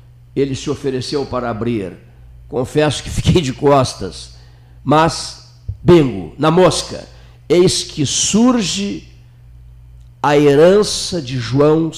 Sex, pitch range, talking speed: male, 120-160 Hz, 105 wpm